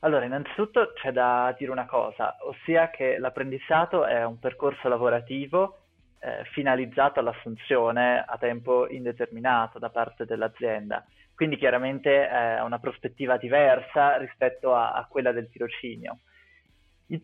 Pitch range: 120-140 Hz